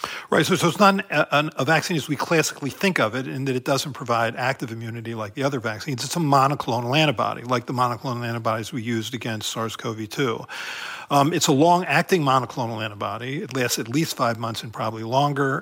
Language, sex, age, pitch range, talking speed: English, male, 50-69, 125-150 Hz, 210 wpm